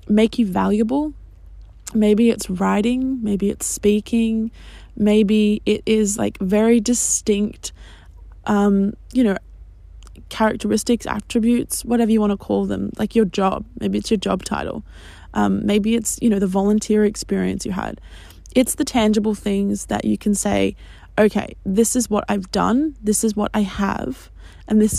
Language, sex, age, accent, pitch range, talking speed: English, female, 20-39, Australian, 195-230 Hz, 155 wpm